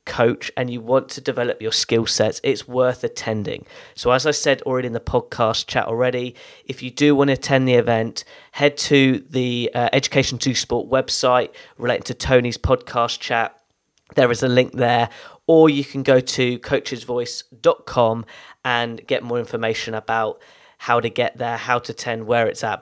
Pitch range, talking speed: 115-135 Hz, 180 wpm